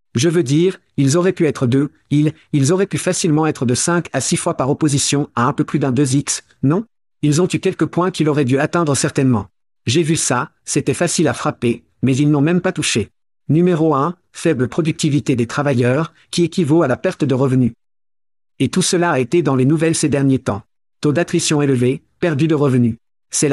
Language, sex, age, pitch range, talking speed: French, male, 50-69, 135-165 Hz, 210 wpm